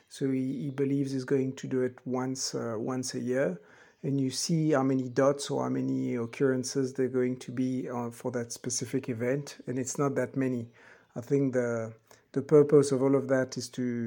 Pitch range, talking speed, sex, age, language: 125-140 Hz, 215 wpm, male, 50-69, English